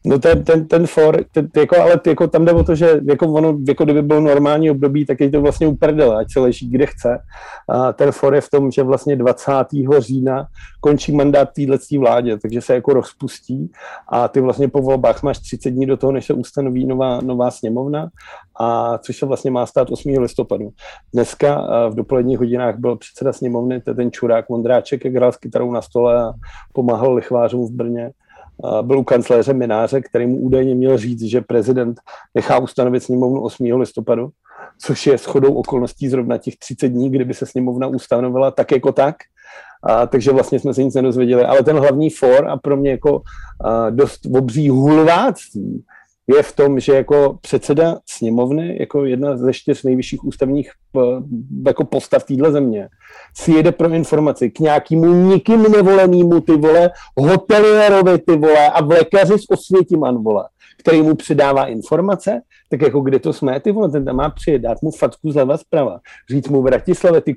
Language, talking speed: Czech, 180 wpm